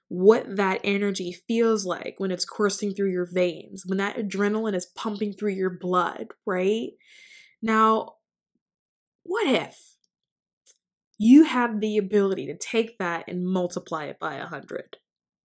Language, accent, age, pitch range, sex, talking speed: English, American, 20-39, 185-230 Hz, female, 135 wpm